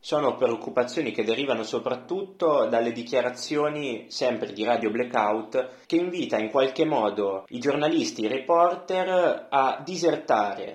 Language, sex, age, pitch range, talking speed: Italian, male, 20-39, 115-155 Hz, 130 wpm